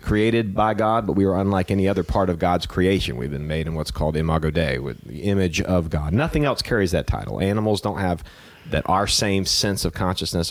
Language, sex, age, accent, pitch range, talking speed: English, male, 40-59, American, 85-105 Hz, 230 wpm